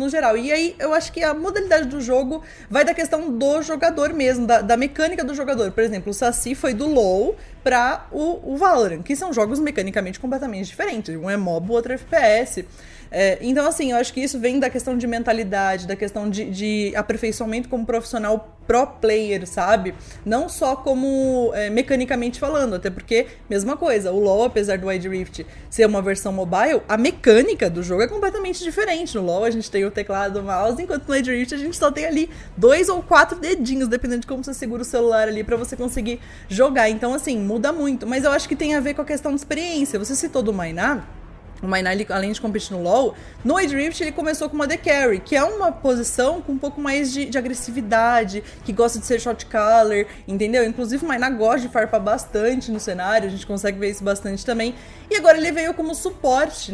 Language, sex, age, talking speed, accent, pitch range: Portuguese, female, 20-39, 215 wpm, Brazilian, 215-290 Hz